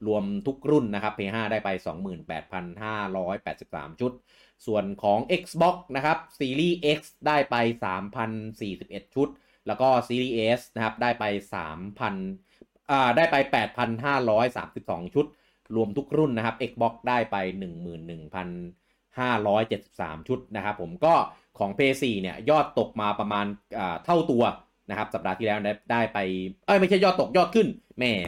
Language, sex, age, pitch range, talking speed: English, male, 30-49, 95-130 Hz, 40 wpm